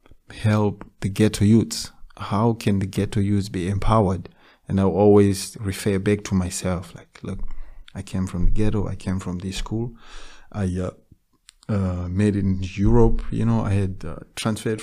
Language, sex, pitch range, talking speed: Czech, male, 95-110 Hz, 170 wpm